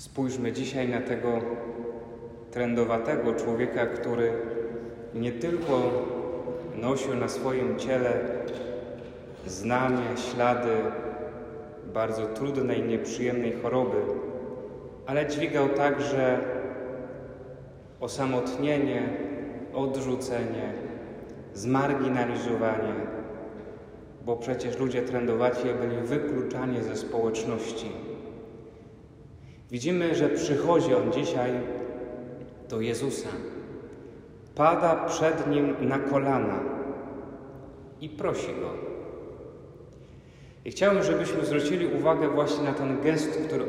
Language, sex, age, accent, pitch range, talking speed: Polish, male, 30-49, native, 120-140 Hz, 80 wpm